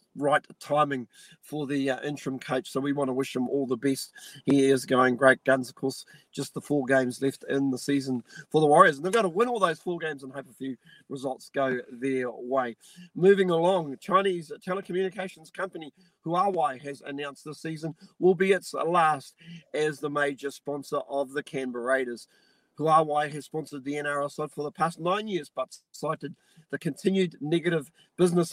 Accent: Australian